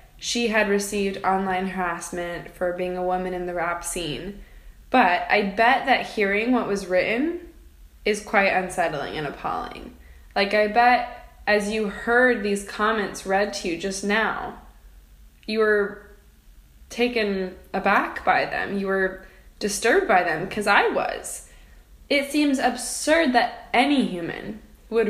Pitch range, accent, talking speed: 190-235 Hz, American, 145 wpm